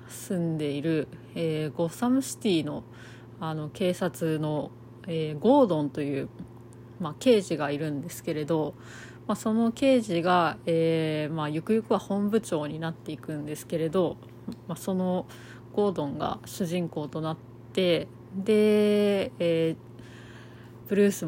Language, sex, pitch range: Japanese, female, 130-185 Hz